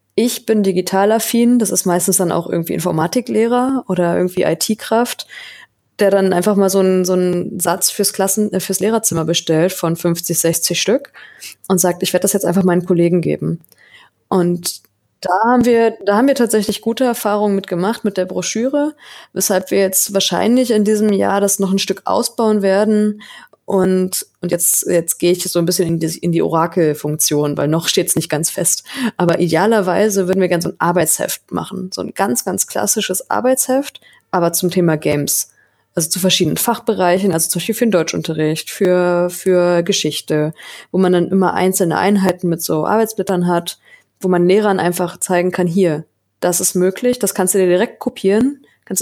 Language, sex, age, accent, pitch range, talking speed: German, female, 20-39, German, 175-210 Hz, 185 wpm